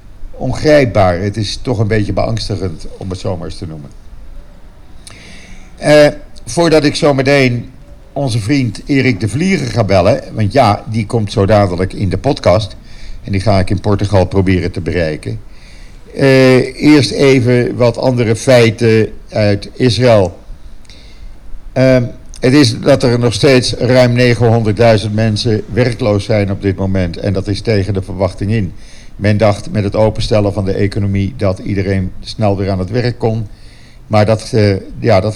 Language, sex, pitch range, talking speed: Dutch, male, 100-120 Hz, 155 wpm